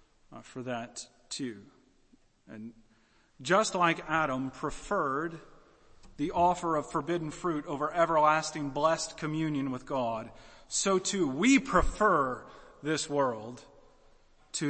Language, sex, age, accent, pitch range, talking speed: English, male, 40-59, American, 145-210 Hz, 105 wpm